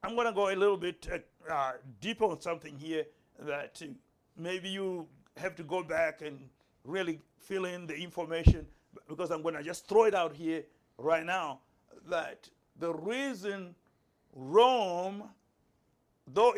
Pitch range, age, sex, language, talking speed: 165-200 Hz, 60-79, male, English, 155 wpm